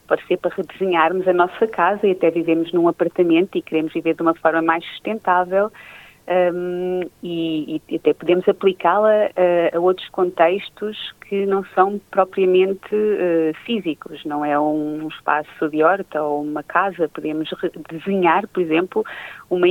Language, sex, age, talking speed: Portuguese, female, 30-49, 150 wpm